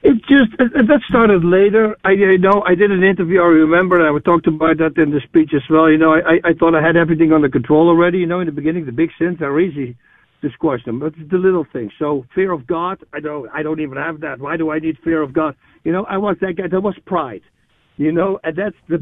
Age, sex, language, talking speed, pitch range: 60-79, male, English, 270 wpm, 150-180 Hz